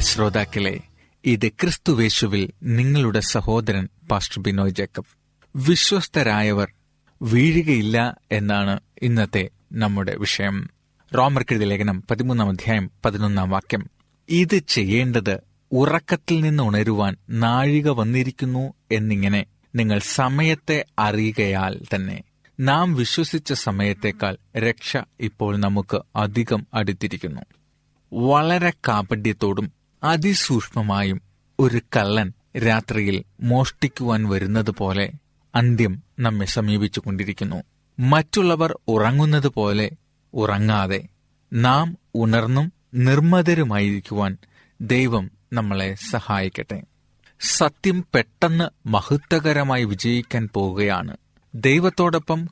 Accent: native